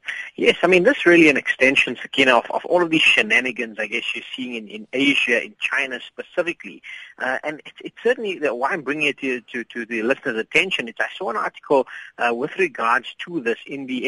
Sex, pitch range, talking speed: male, 125-175 Hz, 230 wpm